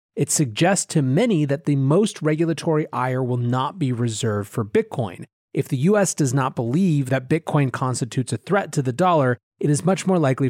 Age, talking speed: 30-49, 195 wpm